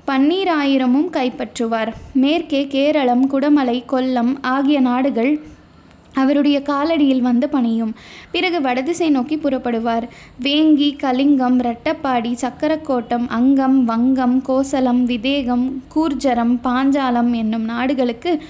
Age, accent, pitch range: 20-39, native, 245-290 Hz